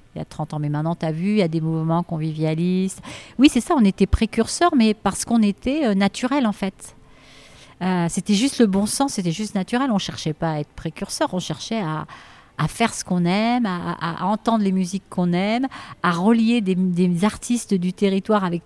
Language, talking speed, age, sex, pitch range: French, 220 wpm, 40-59, female, 160-200 Hz